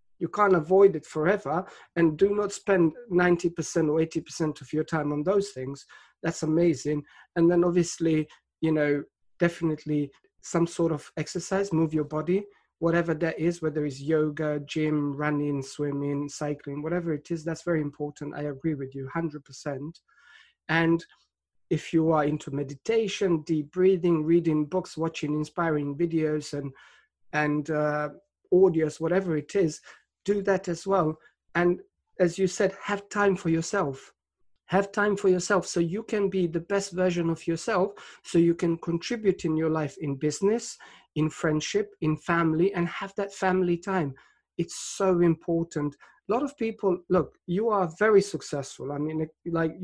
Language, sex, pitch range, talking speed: English, male, 155-190 Hz, 160 wpm